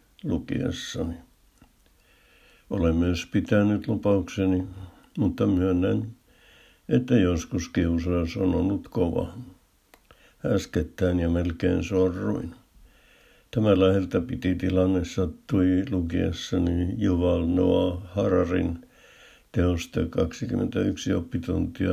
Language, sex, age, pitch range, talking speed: Finnish, male, 60-79, 85-95 Hz, 75 wpm